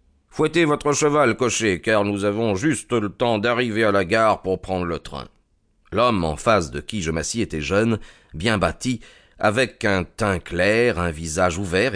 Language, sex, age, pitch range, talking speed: French, male, 30-49, 85-115 Hz, 190 wpm